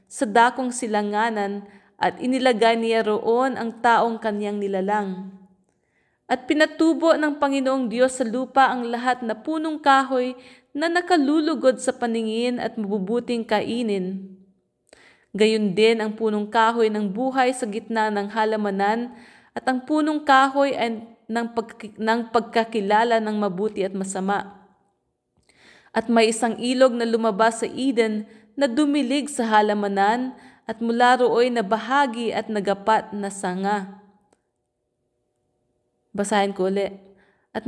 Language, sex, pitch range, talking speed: English, female, 205-250 Hz, 120 wpm